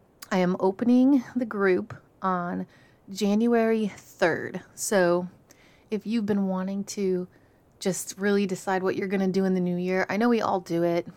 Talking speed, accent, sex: 170 wpm, American, female